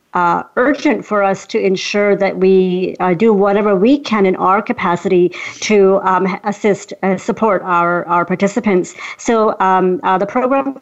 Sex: female